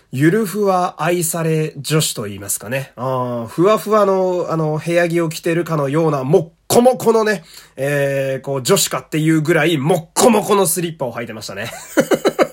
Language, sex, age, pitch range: Japanese, male, 20-39, 125-180 Hz